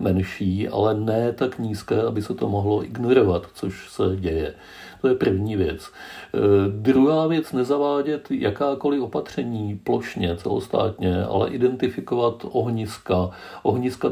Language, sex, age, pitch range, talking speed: Czech, male, 50-69, 100-120 Hz, 120 wpm